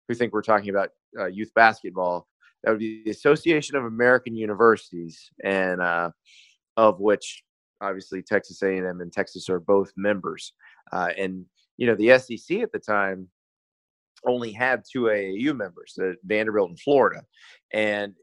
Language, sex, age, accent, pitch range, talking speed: English, male, 30-49, American, 100-120 Hz, 150 wpm